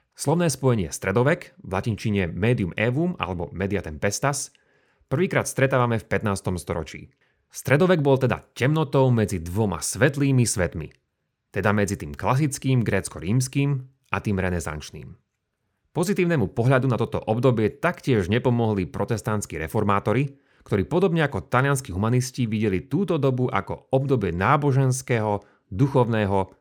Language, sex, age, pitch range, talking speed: Slovak, male, 30-49, 100-135 Hz, 115 wpm